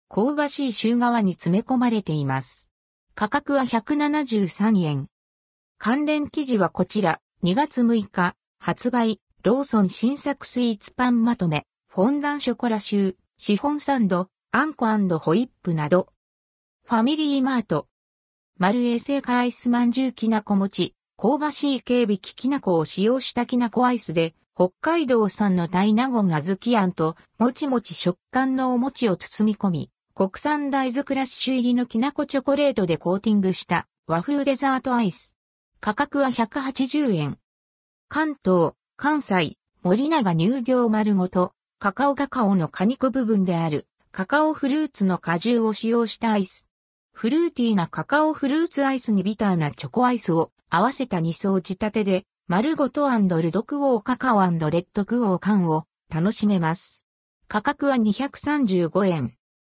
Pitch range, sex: 180-260 Hz, female